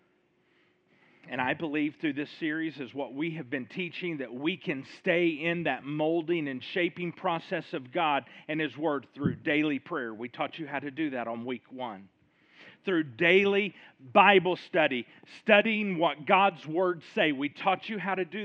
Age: 40-59